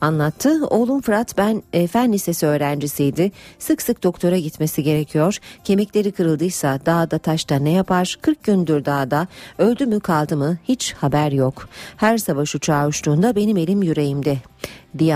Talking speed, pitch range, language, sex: 145 wpm, 150-215 Hz, Turkish, female